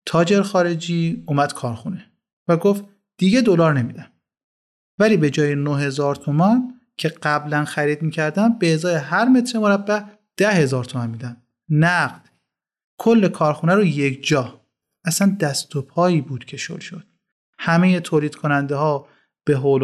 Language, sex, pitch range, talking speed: Persian, male, 140-190 Hz, 150 wpm